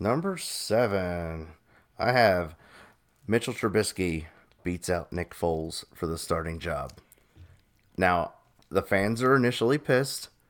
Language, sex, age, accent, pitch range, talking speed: English, male, 30-49, American, 85-100 Hz, 115 wpm